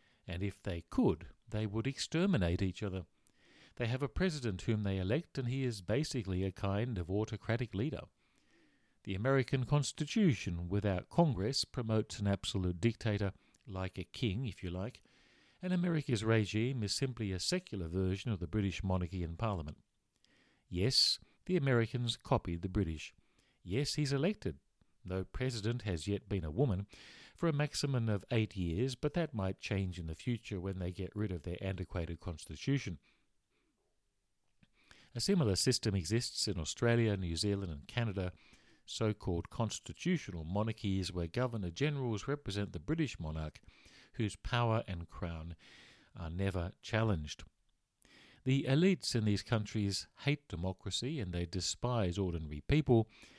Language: English